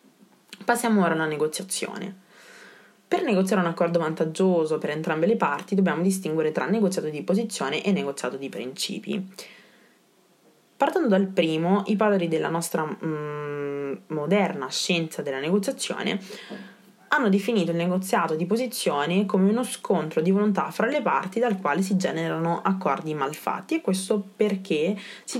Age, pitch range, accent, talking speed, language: 20-39, 165-205 Hz, native, 140 wpm, Italian